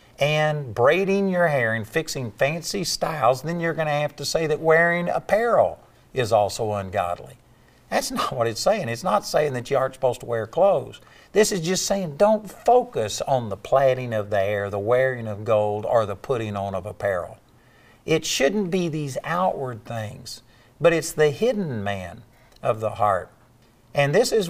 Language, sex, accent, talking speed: English, male, American, 185 wpm